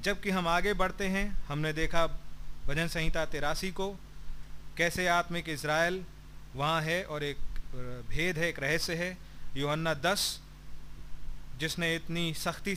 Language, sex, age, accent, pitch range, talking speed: Hindi, male, 40-59, native, 130-185 Hz, 130 wpm